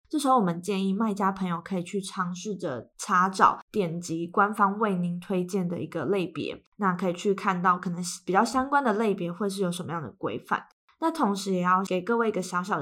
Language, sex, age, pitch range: Chinese, female, 20-39, 180-210 Hz